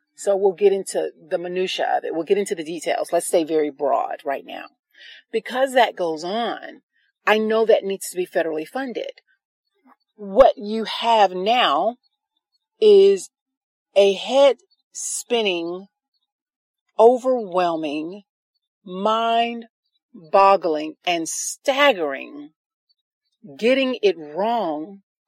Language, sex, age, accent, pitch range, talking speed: English, female, 40-59, American, 180-265 Hz, 110 wpm